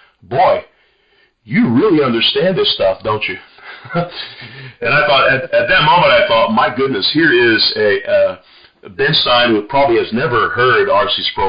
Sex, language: male, English